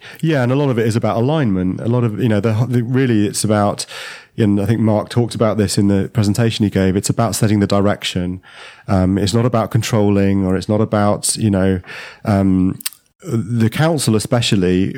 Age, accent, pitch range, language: 30-49, British, 100-115 Hz, English